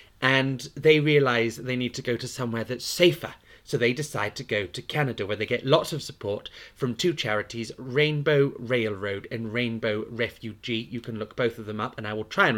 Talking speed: 210 wpm